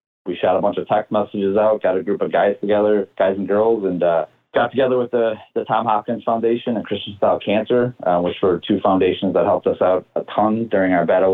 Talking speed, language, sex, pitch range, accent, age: 240 wpm, English, male, 95-110 Hz, American, 20-39